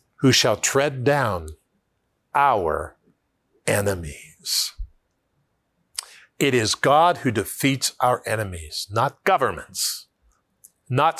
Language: English